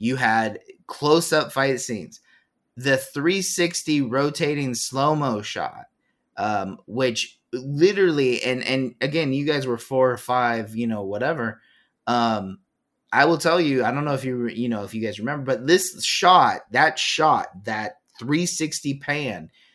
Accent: American